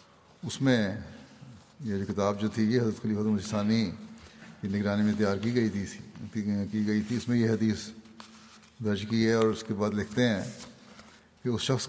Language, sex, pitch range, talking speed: Urdu, male, 105-120 Hz, 180 wpm